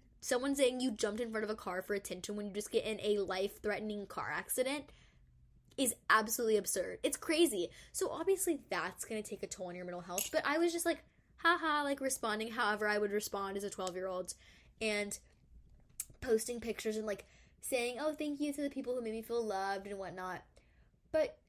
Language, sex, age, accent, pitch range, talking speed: English, female, 10-29, American, 200-265 Hz, 200 wpm